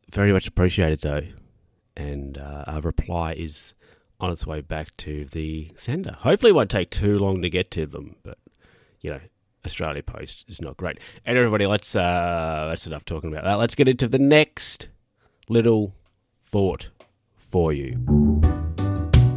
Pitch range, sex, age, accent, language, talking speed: 85-110 Hz, male, 30-49, Australian, English, 160 wpm